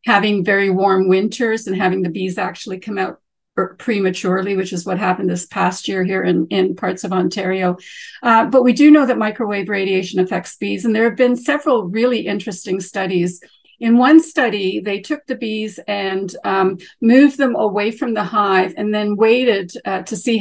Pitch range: 185-230 Hz